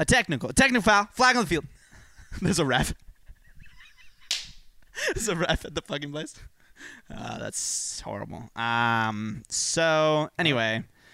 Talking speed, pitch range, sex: 135 wpm, 110-140 Hz, male